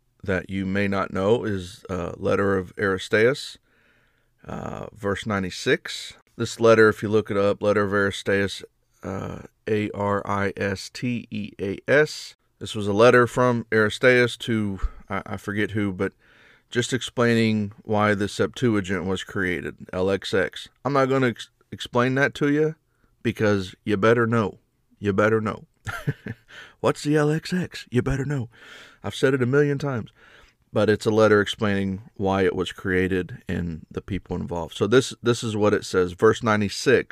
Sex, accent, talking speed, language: male, American, 155 wpm, English